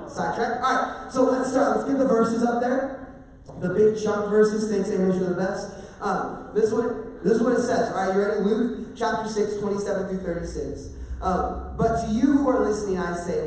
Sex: male